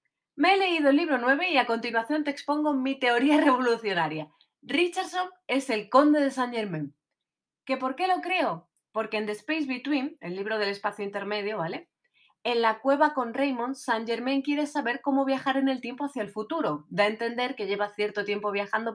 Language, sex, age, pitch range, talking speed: Spanish, female, 30-49, 195-275 Hz, 195 wpm